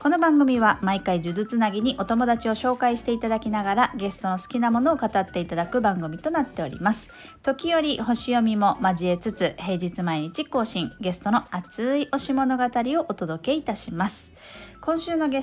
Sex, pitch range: female, 185-255 Hz